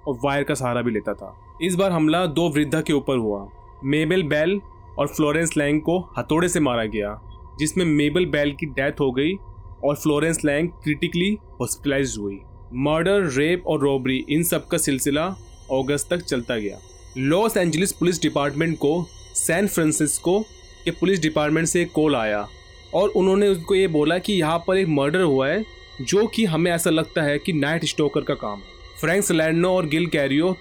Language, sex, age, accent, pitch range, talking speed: Hindi, male, 30-49, native, 130-175 Hz, 175 wpm